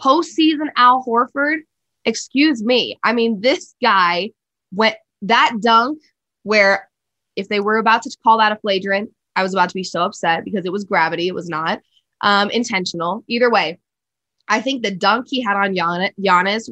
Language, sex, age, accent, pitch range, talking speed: English, female, 20-39, American, 180-240 Hz, 170 wpm